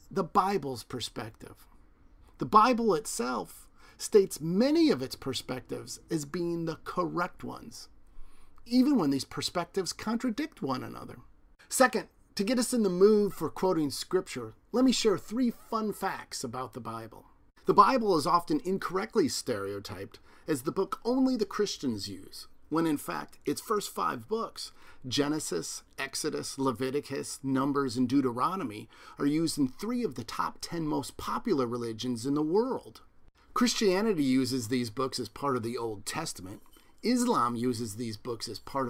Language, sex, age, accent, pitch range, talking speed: English, male, 40-59, American, 125-200 Hz, 150 wpm